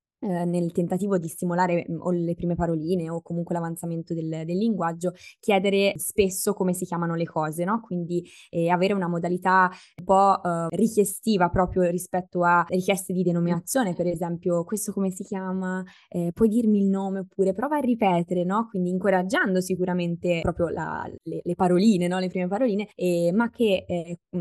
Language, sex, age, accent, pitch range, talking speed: Italian, female, 20-39, native, 170-190 Hz, 170 wpm